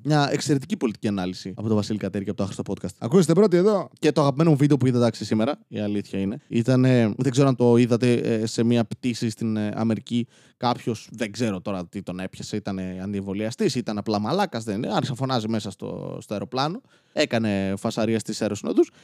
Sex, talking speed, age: male, 190 wpm, 20-39